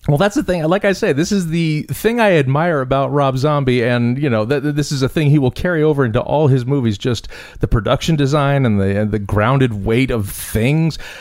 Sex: male